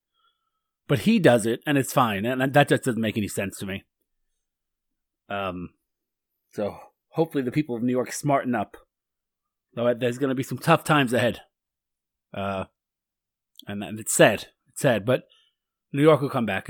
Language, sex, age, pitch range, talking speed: English, male, 30-49, 115-155 Hz, 175 wpm